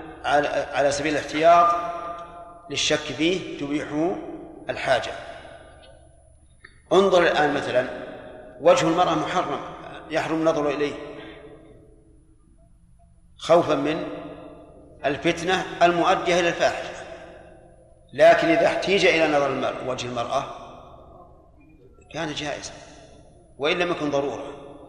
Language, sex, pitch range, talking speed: Arabic, male, 140-170 Hz, 85 wpm